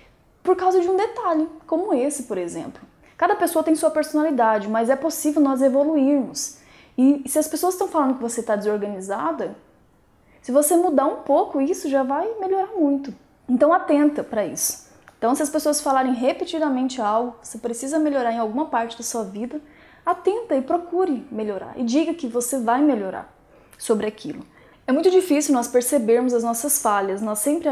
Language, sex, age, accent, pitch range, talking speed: Portuguese, female, 10-29, Brazilian, 230-310 Hz, 175 wpm